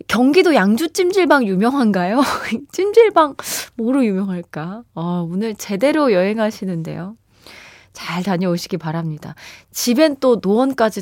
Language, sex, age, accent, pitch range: Korean, female, 20-39, native, 185-285 Hz